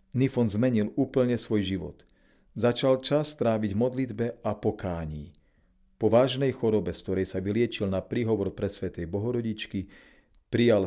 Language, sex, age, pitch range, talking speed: Slovak, male, 40-59, 95-120 Hz, 130 wpm